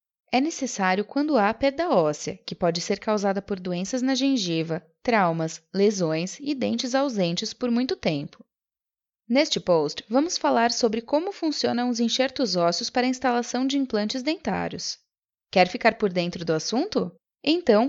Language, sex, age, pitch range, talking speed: Portuguese, female, 20-39, 190-275 Hz, 150 wpm